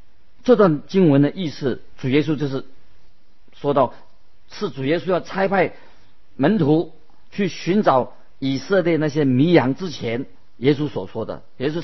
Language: Chinese